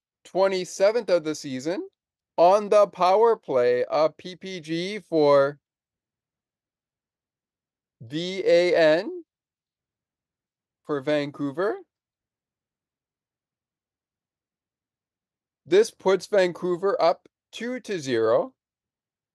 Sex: male